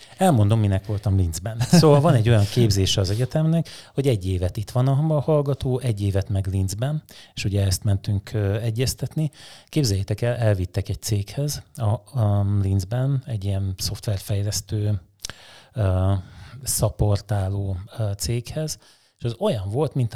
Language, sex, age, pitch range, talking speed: Hungarian, male, 30-49, 105-130 Hz, 145 wpm